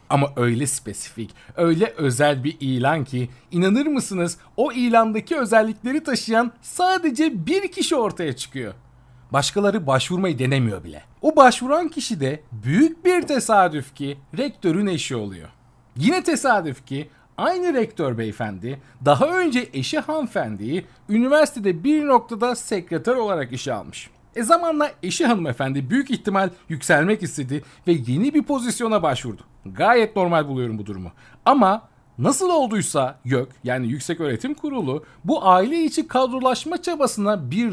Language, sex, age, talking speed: Turkish, male, 40-59, 130 wpm